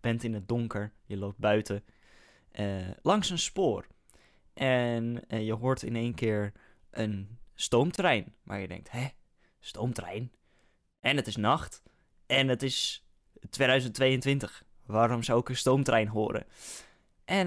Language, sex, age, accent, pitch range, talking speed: Dutch, male, 10-29, Dutch, 105-145 Hz, 135 wpm